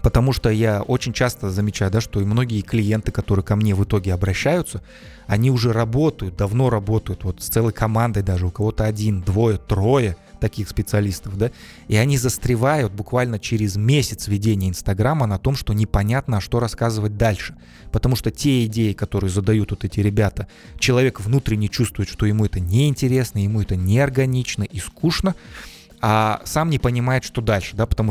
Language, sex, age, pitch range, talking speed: Russian, male, 20-39, 100-120 Hz, 170 wpm